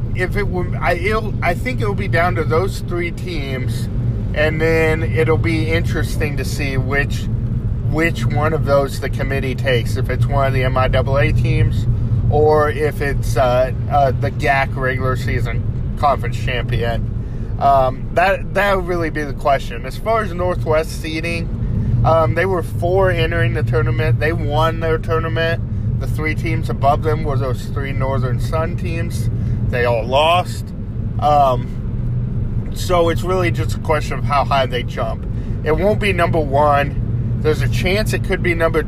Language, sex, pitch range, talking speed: English, male, 115-135 Hz, 165 wpm